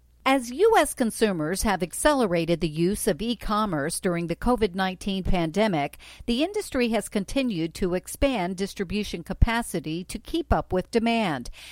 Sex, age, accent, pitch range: female, 50-69, American, 175-240 Hz